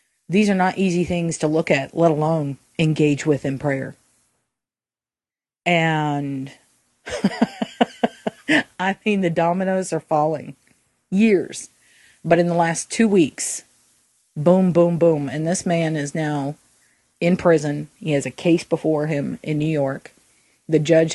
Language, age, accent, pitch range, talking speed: English, 40-59, American, 145-175 Hz, 140 wpm